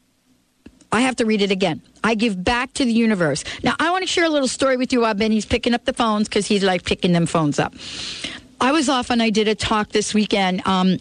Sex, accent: female, American